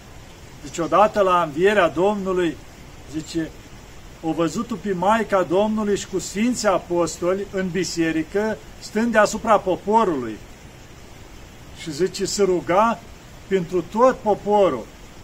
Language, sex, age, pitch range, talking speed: Romanian, male, 50-69, 180-210 Hz, 105 wpm